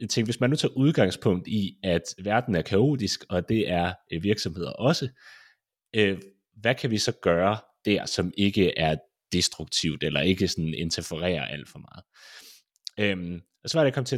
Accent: native